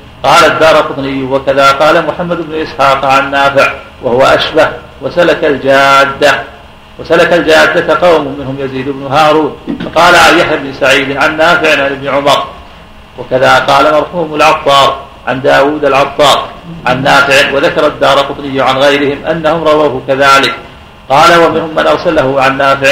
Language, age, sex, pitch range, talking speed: Arabic, 50-69, male, 135-155 Hz, 135 wpm